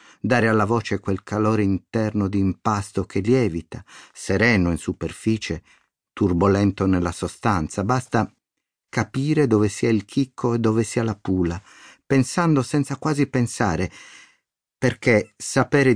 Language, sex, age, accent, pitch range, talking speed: Italian, male, 50-69, native, 95-125 Hz, 125 wpm